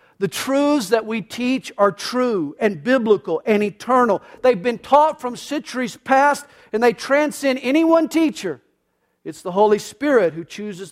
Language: English